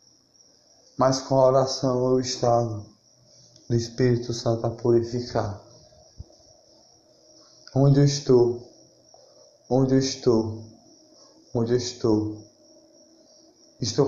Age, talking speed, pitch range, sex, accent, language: 20-39, 90 wpm, 115-140 Hz, male, Brazilian, Portuguese